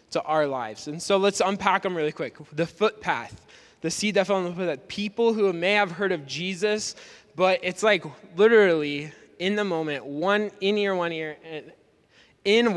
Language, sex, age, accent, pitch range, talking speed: English, male, 20-39, American, 155-195 Hz, 185 wpm